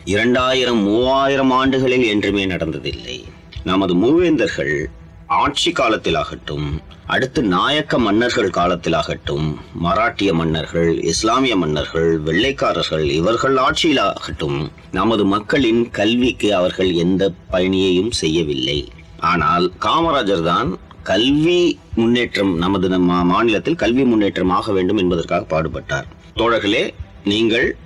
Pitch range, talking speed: 85-125 Hz, 90 wpm